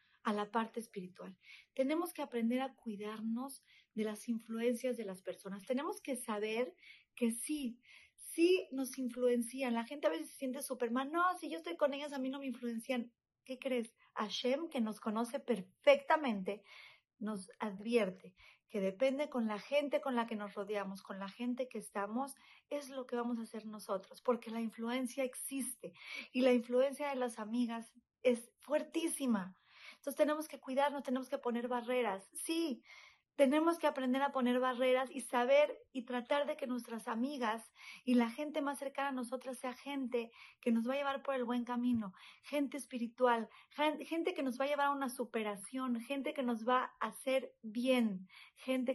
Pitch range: 230-275 Hz